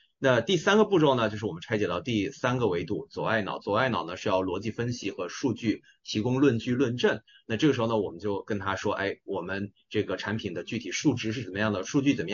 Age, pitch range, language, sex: 30-49, 105-135 Hz, Chinese, male